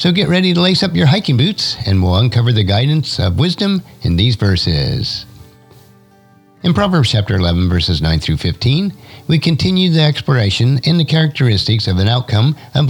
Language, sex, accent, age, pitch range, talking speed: English, male, American, 50-69, 95-150 Hz, 175 wpm